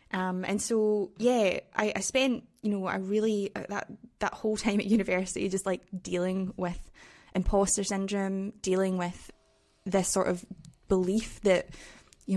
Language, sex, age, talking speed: English, female, 10-29, 155 wpm